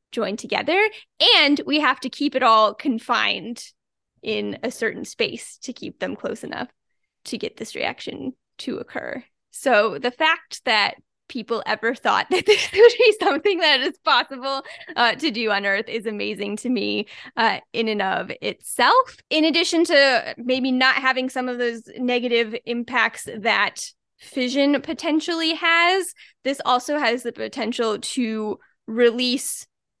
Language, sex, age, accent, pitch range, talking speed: English, female, 10-29, American, 225-295 Hz, 150 wpm